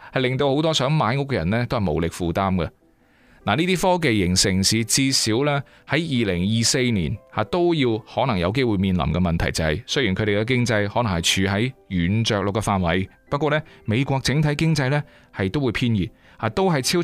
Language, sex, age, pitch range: Chinese, male, 30-49, 95-140 Hz